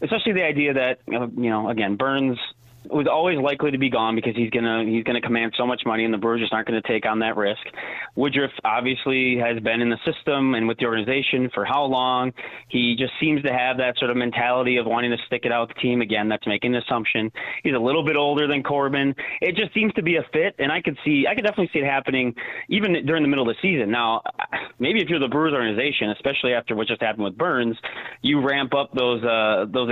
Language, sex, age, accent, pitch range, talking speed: English, male, 30-49, American, 115-145 Hz, 245 wpm